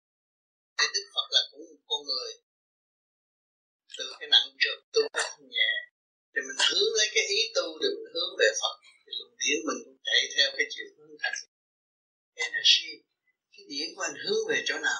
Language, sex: Vietnamese, male